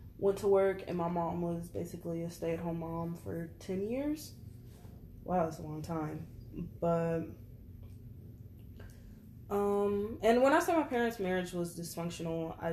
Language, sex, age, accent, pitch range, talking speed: English, female, 20-39, American, 120-180 Hz, 155 wpm